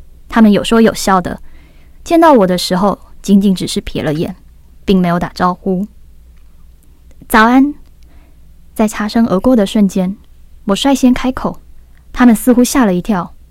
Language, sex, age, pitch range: Chinese, female, 10-29, 165-240 Hz